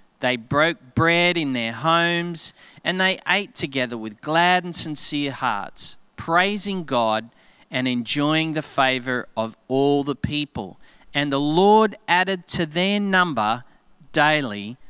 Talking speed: 135 wpm